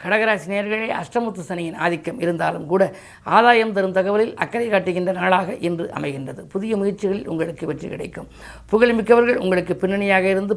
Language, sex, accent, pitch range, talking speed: Tamil, female, native, 170-200 Hz, 135 wpm